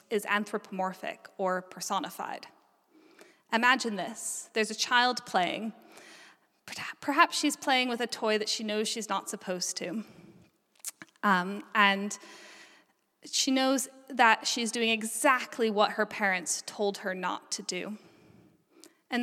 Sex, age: female, 10-29